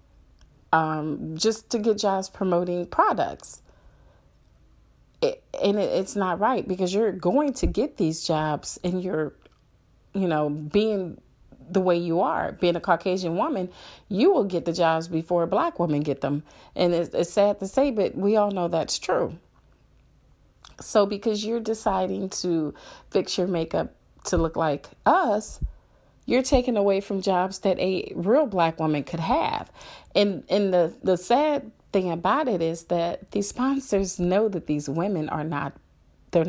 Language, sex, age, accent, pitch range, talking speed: English, female, 30-49, American, 160-205 Hz, 160 wpm